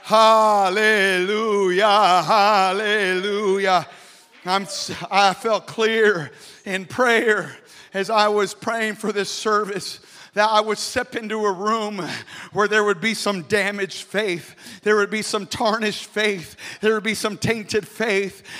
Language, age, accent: English, 50-69, American